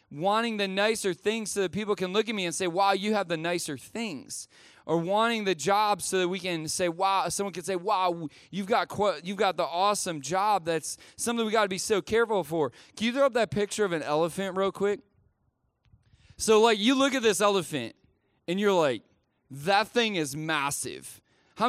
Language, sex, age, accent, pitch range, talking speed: English, male, 20-39, American, 170-220 Hz, 210 wpm